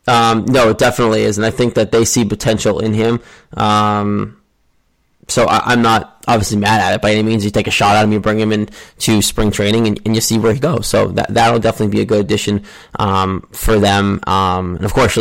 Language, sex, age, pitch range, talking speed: English, male, 20-39, 105-115 Hz, 240 wpm